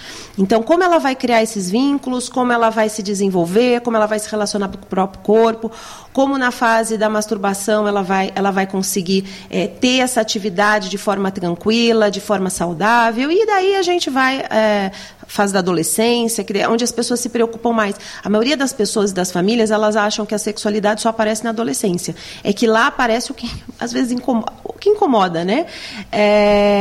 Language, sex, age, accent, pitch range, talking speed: English, female, 30-49, Brazilian, 205-255 Hz, 190 wpm